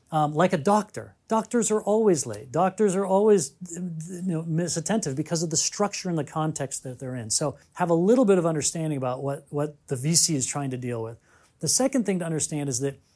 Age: 40-59